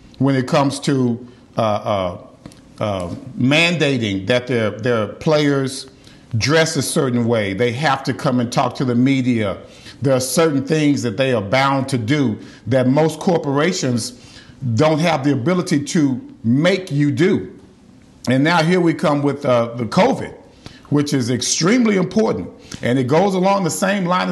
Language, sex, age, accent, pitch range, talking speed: English, male, 50-69, American, 130-180 Hz, 165 wpm